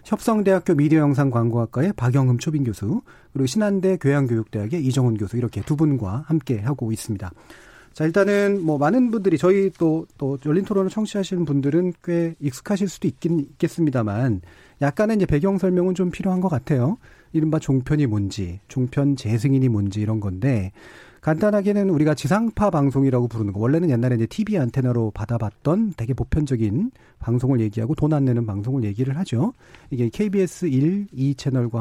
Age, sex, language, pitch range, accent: 40-59, male, Korean, 120-170 Hz, native